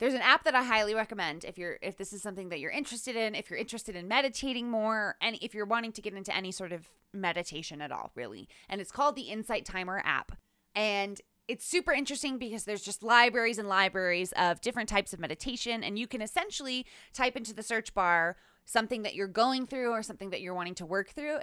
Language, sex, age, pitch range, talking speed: English, female, 20-39, 180-235 Hz, 225 wpm